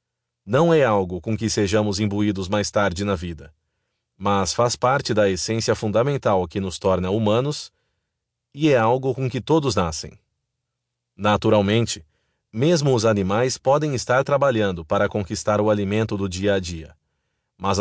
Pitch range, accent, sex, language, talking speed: 100-120 Hz, Brazilian, male, Portuguese, 150 wpm